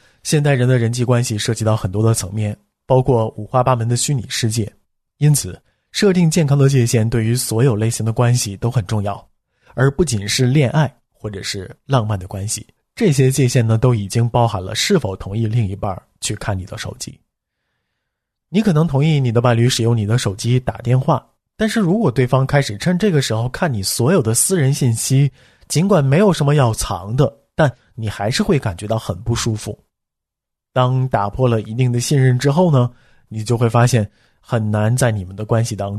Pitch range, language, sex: 105-135 Hz, Chinese, male